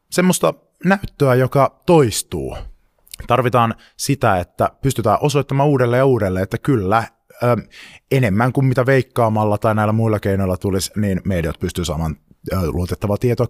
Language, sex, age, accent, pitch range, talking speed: Finnish, male, 30-49, native, 95-120 Hz, 135 wpm